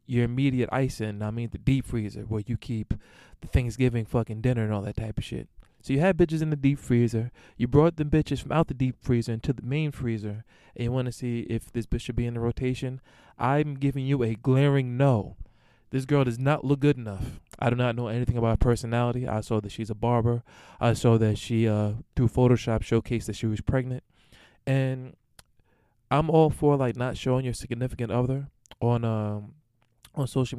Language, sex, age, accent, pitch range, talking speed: English, male, 20-39, American, 110-130 Hz, 210 wpm